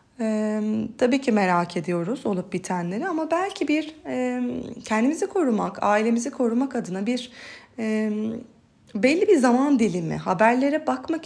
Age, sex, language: 30-49, female, Turkish